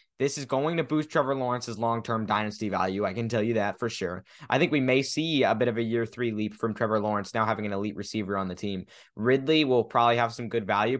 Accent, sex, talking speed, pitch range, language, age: American, male, 255 wpm, 110-140 Hz, English, 10-29